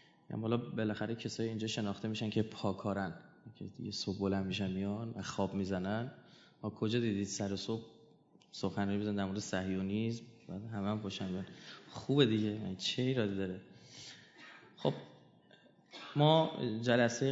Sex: male